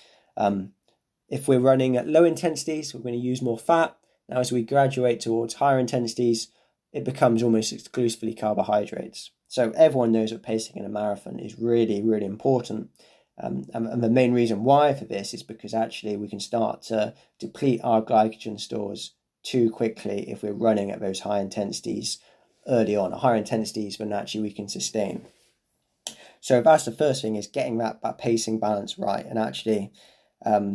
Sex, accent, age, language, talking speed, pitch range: male, British, 20-39, English, 175 wpm, 110-130 Hz